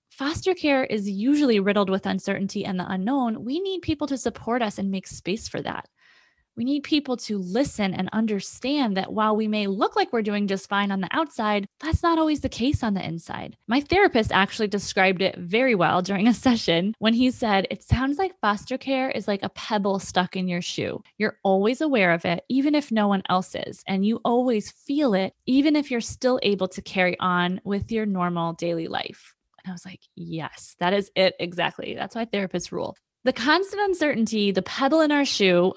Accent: American